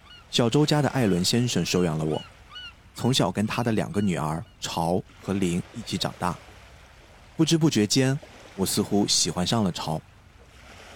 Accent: native